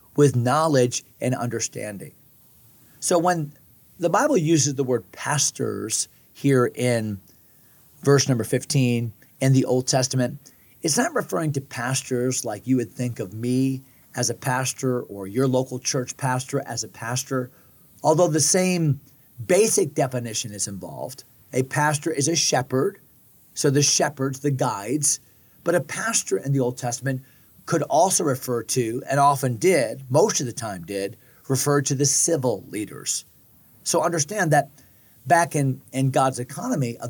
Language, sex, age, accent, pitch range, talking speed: English, male, 40-59, American, 120-150 Hz, 150 wpm